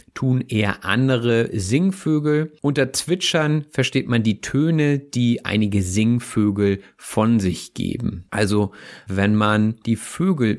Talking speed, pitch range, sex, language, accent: 120 wpm, 100-130 Hz, male, German, German